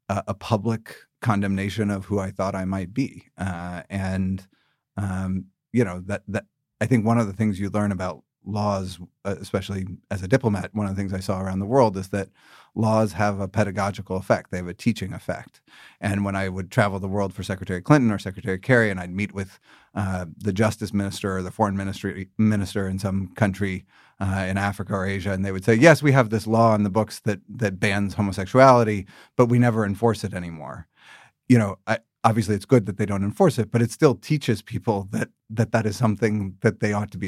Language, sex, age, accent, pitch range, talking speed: English, male, 40-59, American, 95-110 Hz, 215 wpm